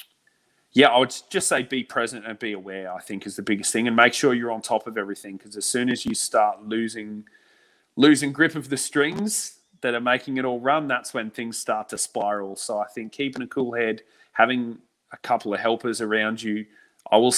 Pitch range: 100-120 Hz